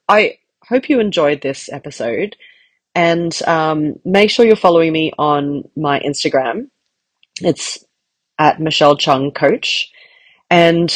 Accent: Australian